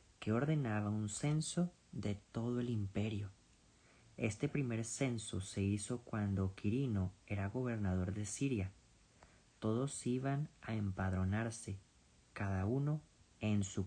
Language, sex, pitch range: Spanish, male, 100-125 Hz